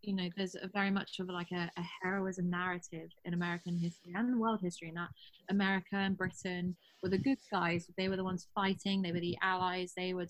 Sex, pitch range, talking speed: female, 170-190 Hz, 220 wpm